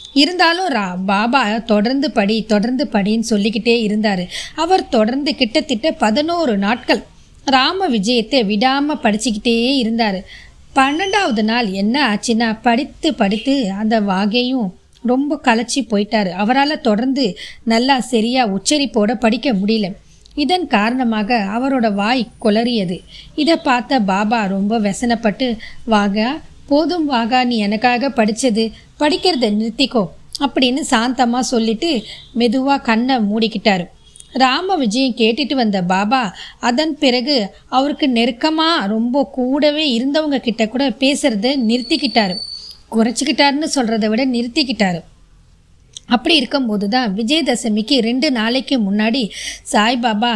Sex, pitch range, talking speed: female, 220-275 Hz, 100 wpm